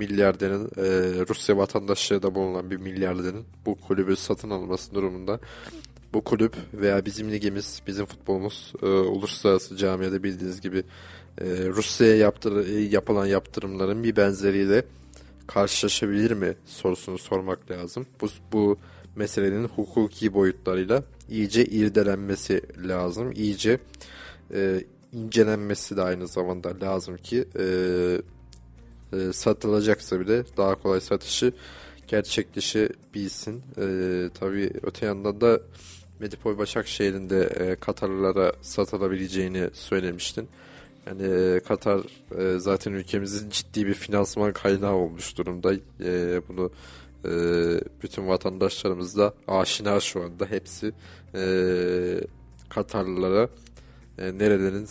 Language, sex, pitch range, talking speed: Turkish, male, 90-105 Hz, 105 wpm